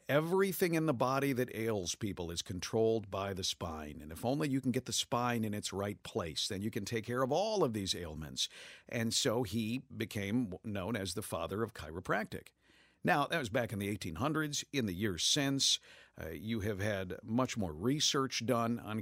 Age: 50-69